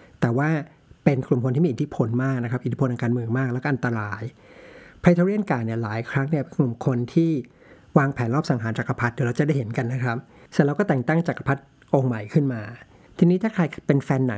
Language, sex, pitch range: Thai, male, 120-150 Hz